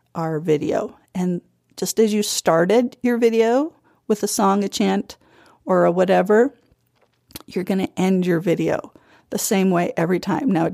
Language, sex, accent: English, female, American